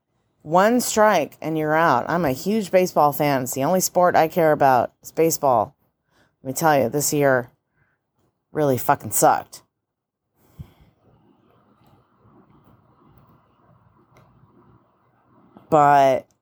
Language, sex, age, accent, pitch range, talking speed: English, female, 30-49, American, 130-165 Hz, 105 wpm